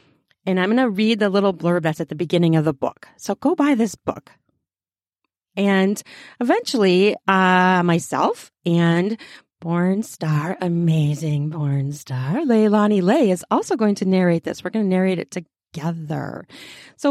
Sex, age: female, 40-59